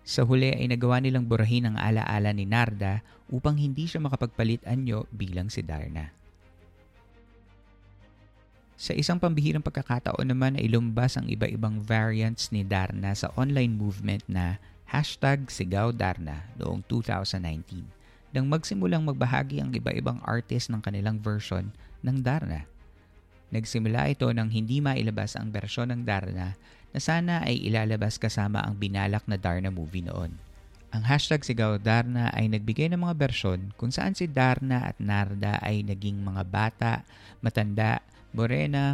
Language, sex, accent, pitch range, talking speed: Filipino, male, native, 100-125 Hz, 140 wpm